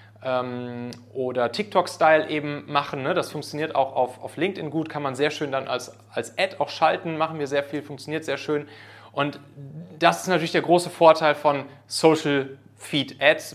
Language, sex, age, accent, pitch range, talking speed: German, male, 30-49, German, 130-160 Hz, 165 wpm